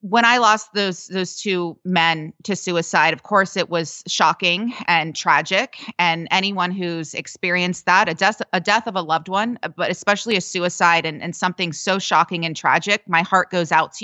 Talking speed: 190 wpm